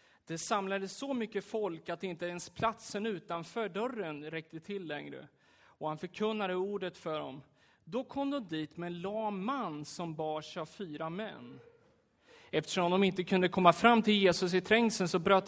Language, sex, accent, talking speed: Swedish, male, native, 165 wpm